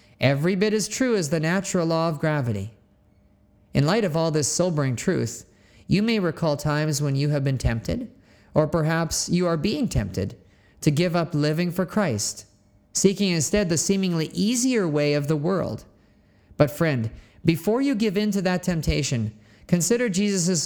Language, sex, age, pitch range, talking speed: English, male, 40-59, 120-190 Hz, 170 wpm